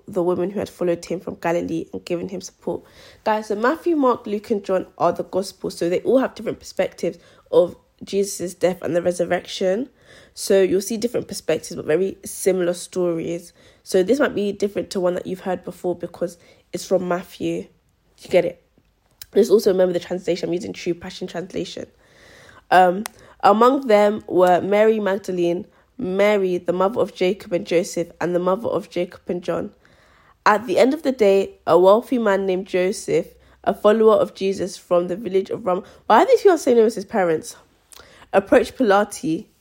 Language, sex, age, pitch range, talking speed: English, female, 20-39, 175-210 Hz, 190 wpm